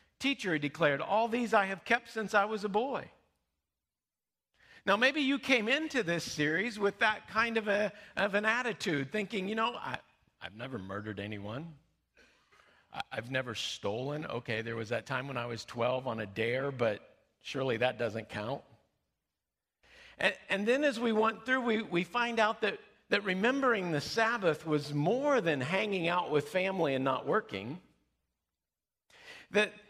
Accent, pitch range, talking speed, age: American, 150-225 Hz, 160 wpm, 50-69